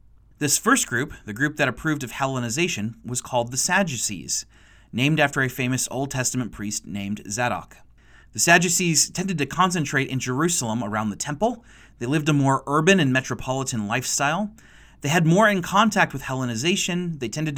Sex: male